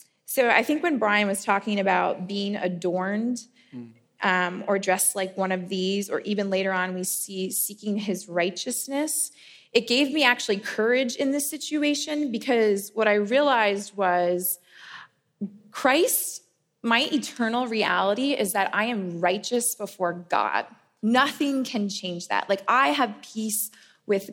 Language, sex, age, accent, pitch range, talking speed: English, female, 20-39, American, 190-250 Hz, 145 wpm